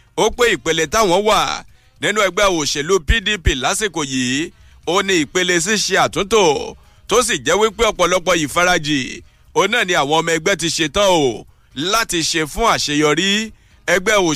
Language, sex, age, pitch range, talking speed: English, male, 50-69, 155-210 Hz, 165 wpm